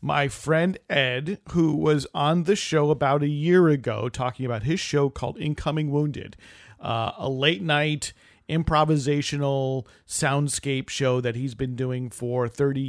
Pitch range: 120-150 Hz